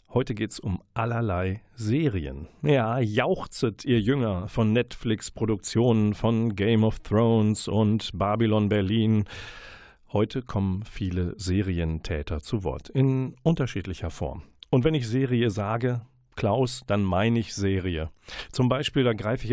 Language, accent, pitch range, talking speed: German, German, 95-120 Hz, 130 wpm